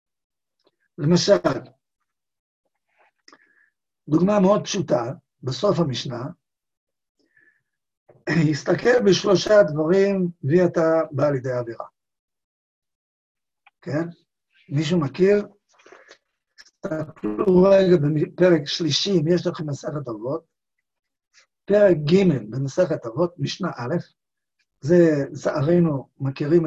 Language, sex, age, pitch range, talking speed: Hebrew, male, 50-69, 150-190 Hz, 80 wpm